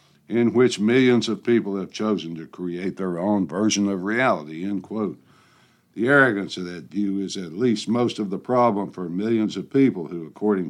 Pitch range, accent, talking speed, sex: 95-120 Hz, American, 190 wpm, male